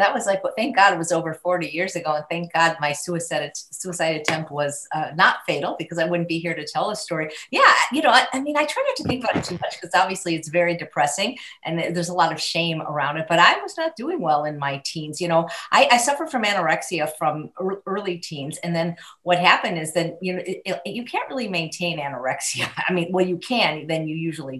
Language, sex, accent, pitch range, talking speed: English, female, American, 155-195 Hz, 255 wpm